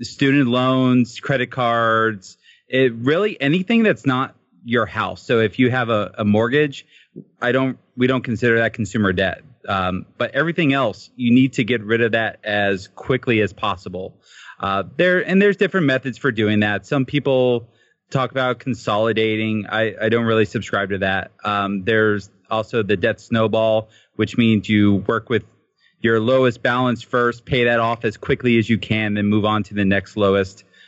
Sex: male